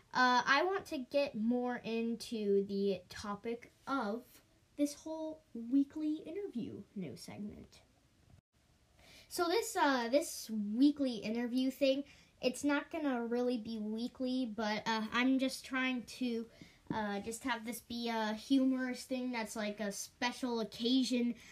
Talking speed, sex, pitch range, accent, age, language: 135 wpm, female, 225-280 Hz, American, 10-29, English